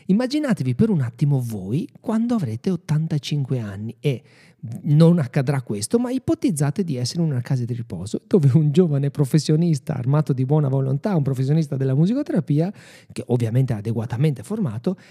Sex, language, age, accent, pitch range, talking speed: male, Italian, 40-59, native, 130-175 Hz, 155 wpm